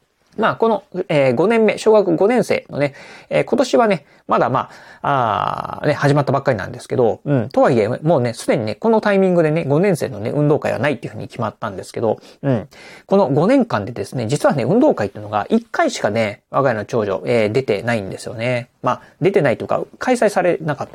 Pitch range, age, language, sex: 125-210 Hz, 30-49, Japanese, male